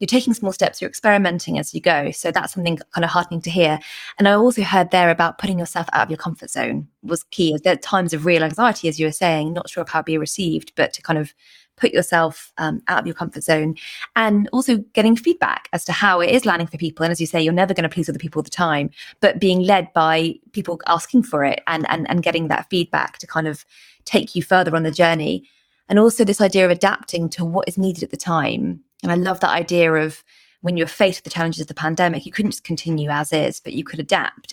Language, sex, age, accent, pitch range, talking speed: English, female, 20-39, British, 160-195 Hz, 255 wpm